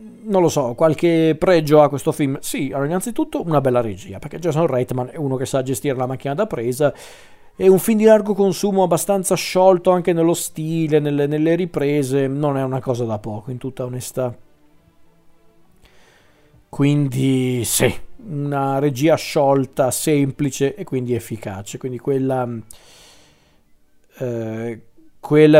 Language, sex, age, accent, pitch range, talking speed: Italian, male, 40-59, native, 130-155 Hz, 145 wpm